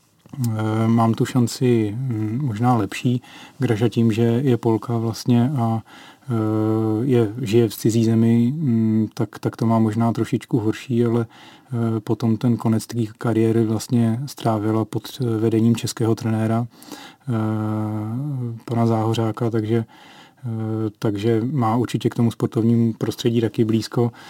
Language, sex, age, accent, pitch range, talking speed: Czech, male, 30-49, native, 110-120 Hz, 115 wpm